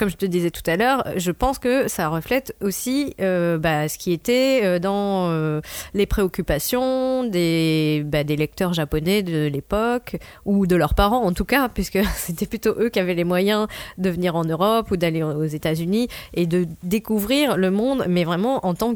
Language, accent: French, French